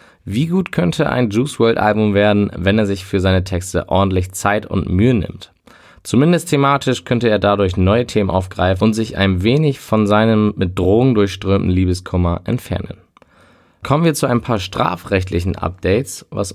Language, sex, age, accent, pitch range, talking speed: German, male, 20-39, German, 95-125 Hz, 165 wpm